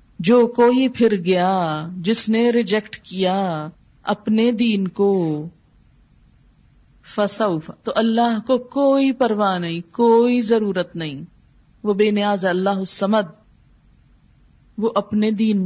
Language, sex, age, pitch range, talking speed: Urdu, female, 40-59, 180-225 Hz, 110 wpm